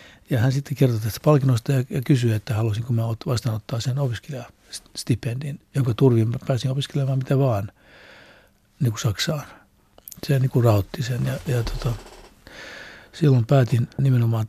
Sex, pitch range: male, 115-135 Hz